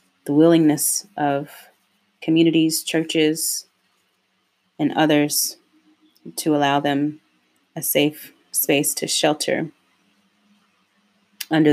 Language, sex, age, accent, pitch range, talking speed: English, female, 30-49, American, 150-180 Hz, 80 wpm